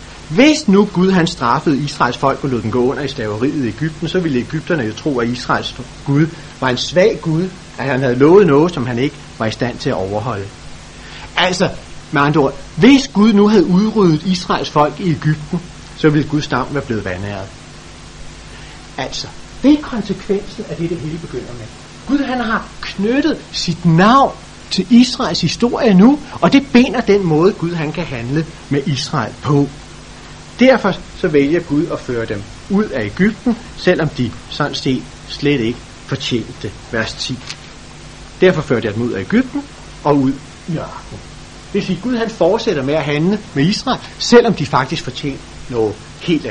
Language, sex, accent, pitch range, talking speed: Danish, male, native, 120-180 Hz, 185 wpm